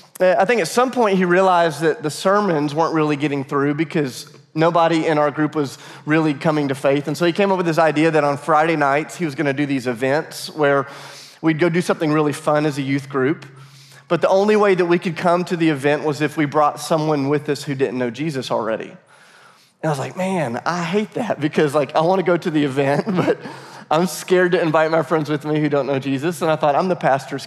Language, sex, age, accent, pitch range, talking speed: English, male, 30-49, American, 140-165 Hz, 245 wpm